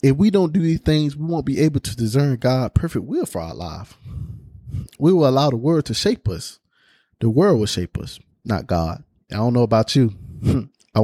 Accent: American